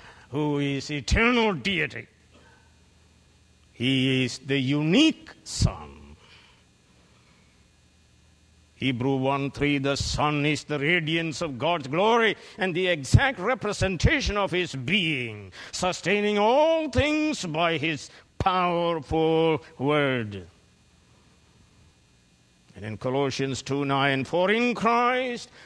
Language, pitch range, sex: English, 120-170 Hz, male